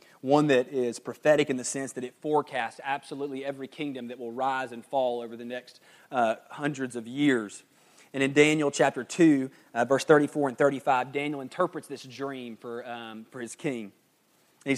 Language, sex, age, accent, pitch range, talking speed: English, male, 30-49, American, 130-165 Hz, 175 wpm